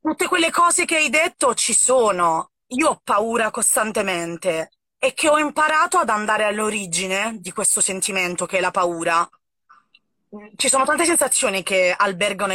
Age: 20-39